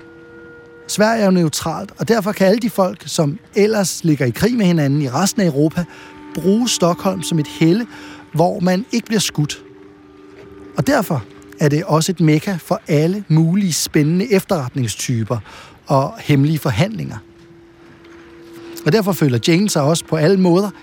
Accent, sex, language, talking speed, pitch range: native, male, Danish, 160 wpm, 140-175 Hz